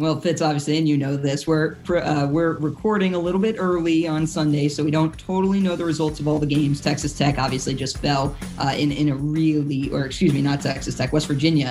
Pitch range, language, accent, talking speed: 145-170 Hz, English, American, 235 wpm